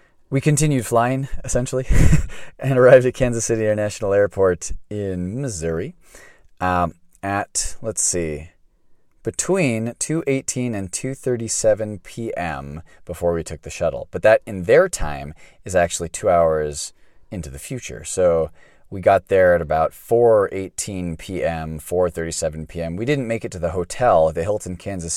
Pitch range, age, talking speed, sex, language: 85-120 Hz, 30-49, 140 wpm, male, English